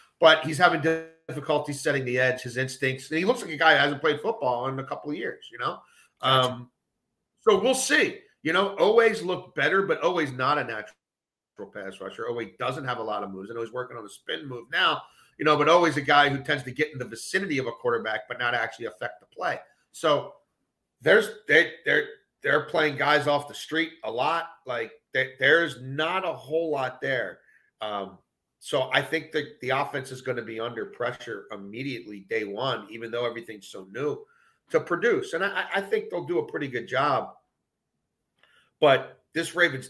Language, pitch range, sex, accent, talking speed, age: English, 120-160 Hz, male, American, 205 wpm, 40-59